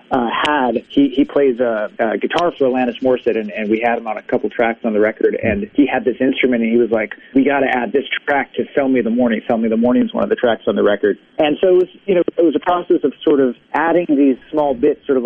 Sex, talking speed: male, 295 wpm